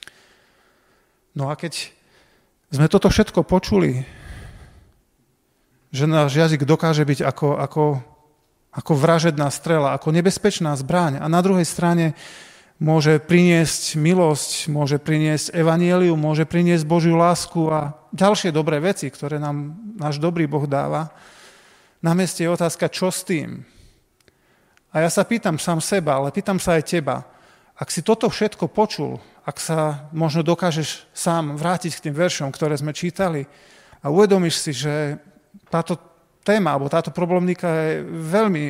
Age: 40-59